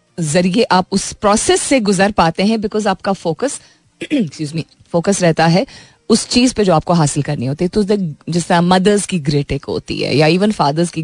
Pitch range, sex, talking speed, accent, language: 155-200 Hz, female, 195 wpm, native, Hindi